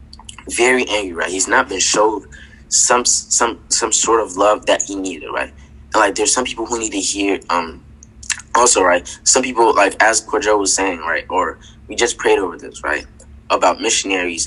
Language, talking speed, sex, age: English, 185 wpm, male, 10-29